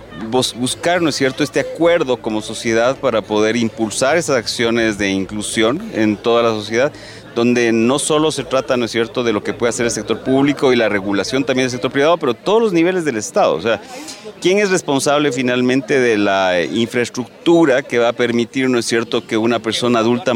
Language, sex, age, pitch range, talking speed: Spanish, male, 30-49, 110-140 Hz, 200 wpm